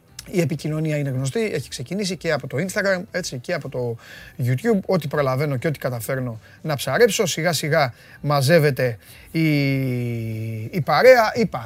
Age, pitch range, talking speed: 30-49, 145-210 Hz, 145 wpm